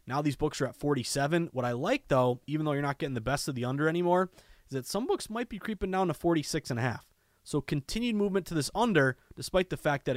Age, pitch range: 20-39, 125-160 Hz